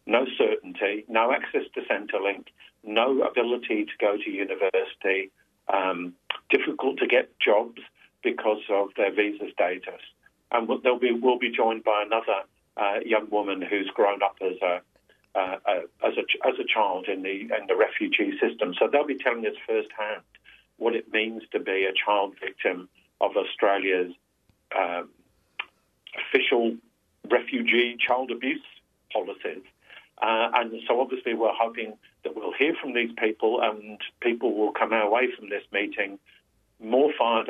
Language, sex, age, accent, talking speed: English, male, 50-69, British, 155 wpm